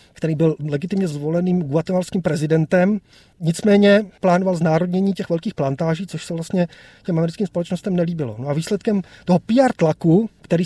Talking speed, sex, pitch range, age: 145 wpm, male, 165-190 Hz, 30-49